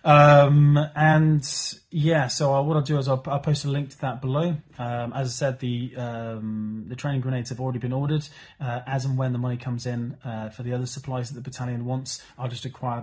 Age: 30-49